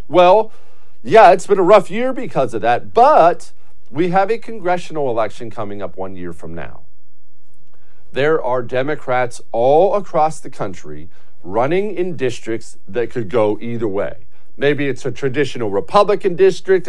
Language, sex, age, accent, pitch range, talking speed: English, male, 50-69, American, 120-190 Hz, 155 wpm